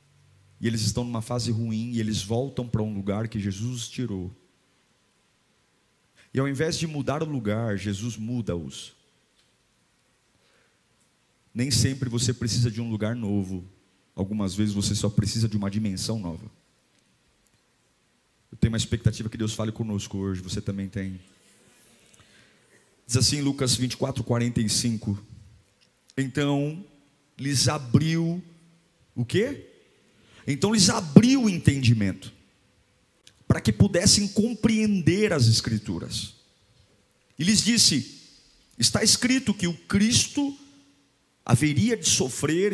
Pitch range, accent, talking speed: 110-170 Hz, Brazilian, 120 wpm